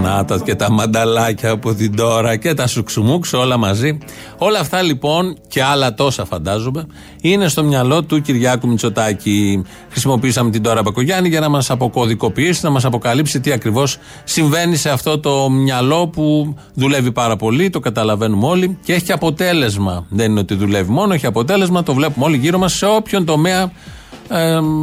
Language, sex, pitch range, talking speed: Greek, male, 115-160 Hz, 165 wpm